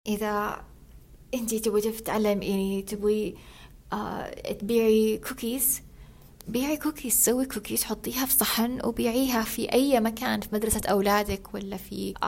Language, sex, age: Arabic, female, 20-39